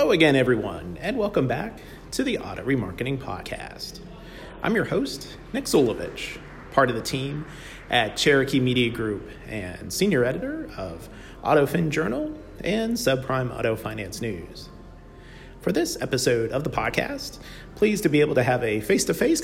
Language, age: English, 40-59